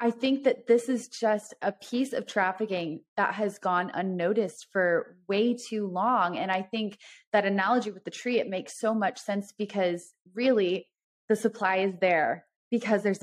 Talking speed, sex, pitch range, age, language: 175 wpm, female, 185-225 Hz, 20-39, English